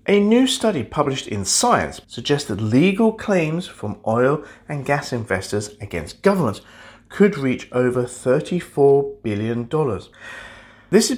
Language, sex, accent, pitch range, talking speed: English, male, British, 115-170 Hz, 130 wpm